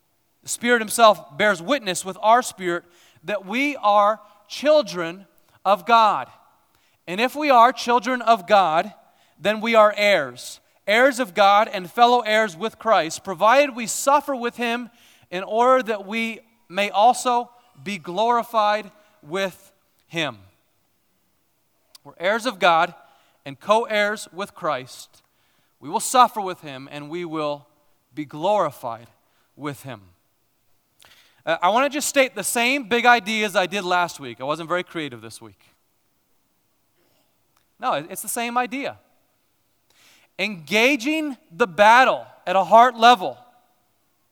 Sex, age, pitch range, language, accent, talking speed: male, 30-49, 175-245 Hz, English, American, 135 wpm